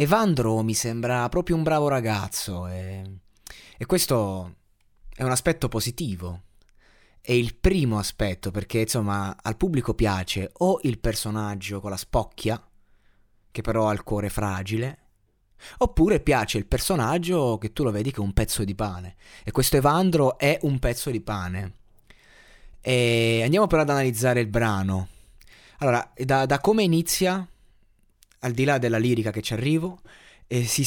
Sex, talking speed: male, 155 wpm